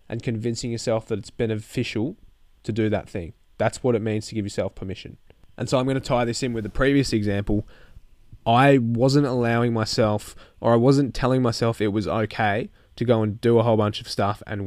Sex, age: male, 20-39